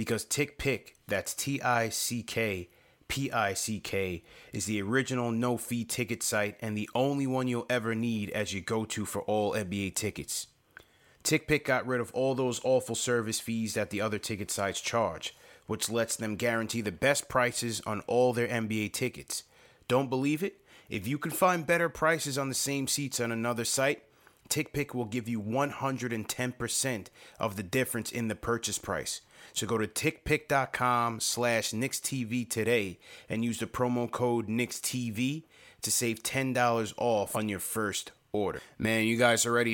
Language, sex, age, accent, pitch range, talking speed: English, male, 30-49, American, 110-125 Hz, 160 wpm